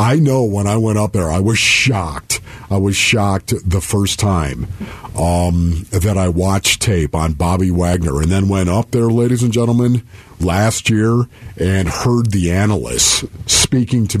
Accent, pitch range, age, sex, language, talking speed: American, 95-150 Hz, 50-69, male, English, 170 wpm